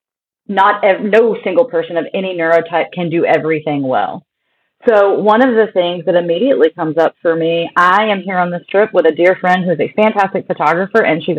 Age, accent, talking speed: 30-49, American, 205 wpm